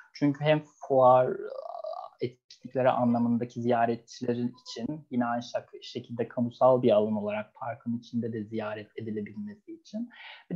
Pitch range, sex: 120-160 Hz, male